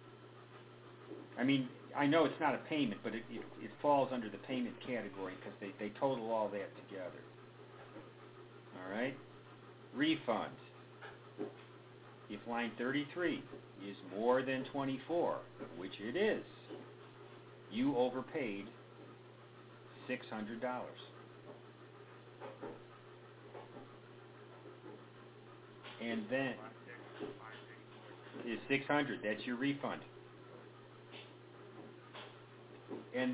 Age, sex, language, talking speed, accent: 50-69, male, English, 85 wpm, American